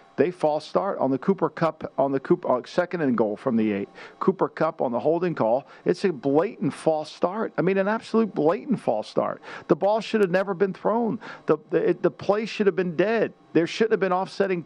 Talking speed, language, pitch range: 225 wpm, English, 150-210 Hz